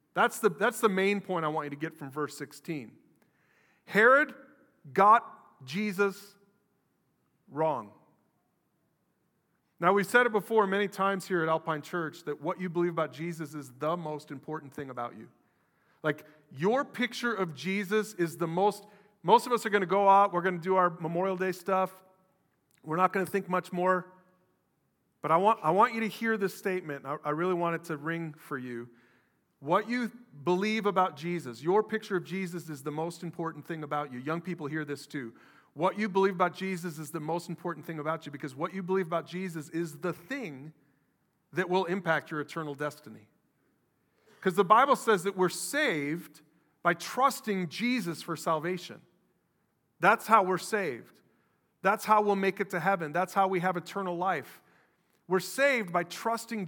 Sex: male